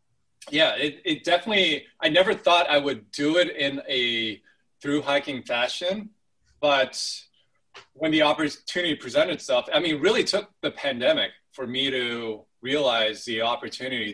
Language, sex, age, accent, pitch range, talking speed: English, male, 20-39, American, 115-145 Hz, 150 wpm